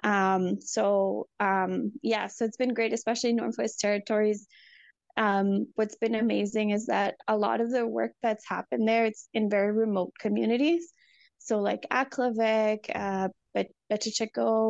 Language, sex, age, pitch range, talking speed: English, female, 20-39, 200-240 Hz, 145 wpm